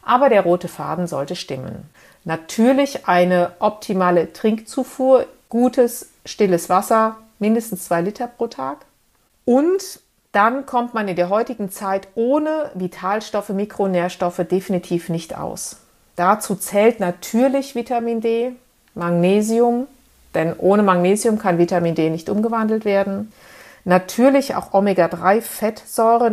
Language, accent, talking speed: German, German, 115 wpm